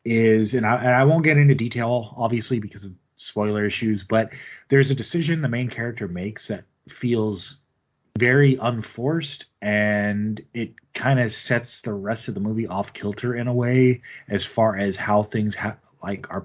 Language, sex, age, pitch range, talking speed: English, male, 30-49, 105-130 Hz, 170 wpm